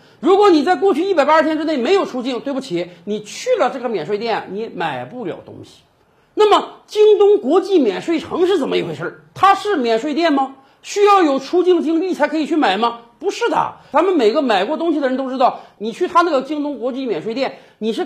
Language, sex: Chinese, male